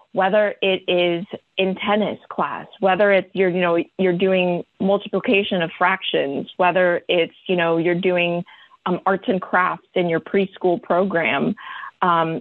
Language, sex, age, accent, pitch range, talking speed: English, female, 30-49, American, 180-210 Hz, 150 wpm